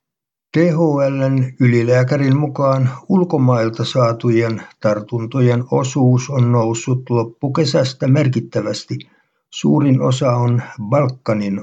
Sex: male